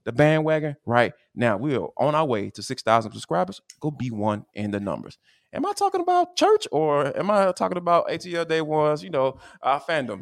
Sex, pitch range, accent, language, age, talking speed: male, 155-215 Hz, American, English, 20-39, 205 wpm